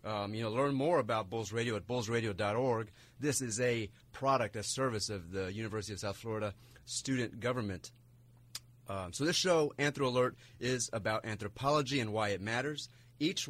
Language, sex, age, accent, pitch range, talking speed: English, male, 30-49, American, 110-130 Hz, 170 wpm